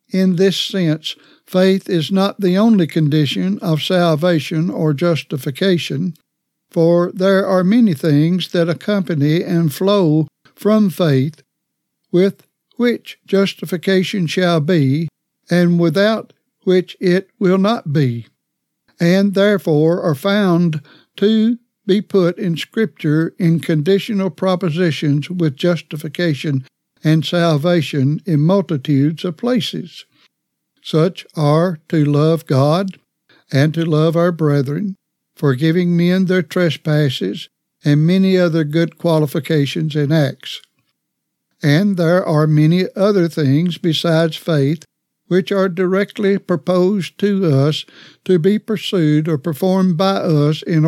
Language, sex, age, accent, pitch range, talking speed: English, male, 60-79, American, 155-190 Hz, 115 wpm